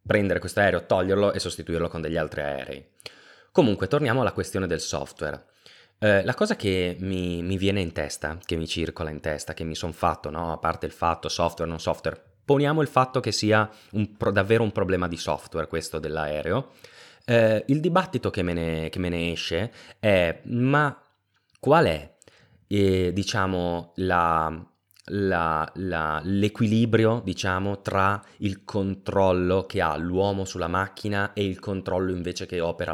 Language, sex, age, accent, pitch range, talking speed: Italian, male, 20-39, native, 85-110 Hz, 160 wpm